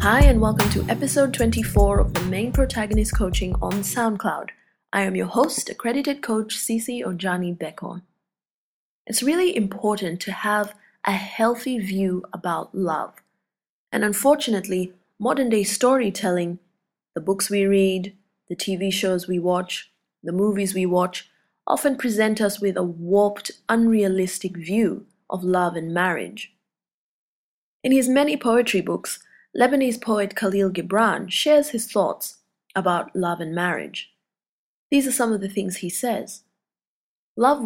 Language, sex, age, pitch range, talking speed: English, female, 20-39, 185-230 Hz, 135 wpm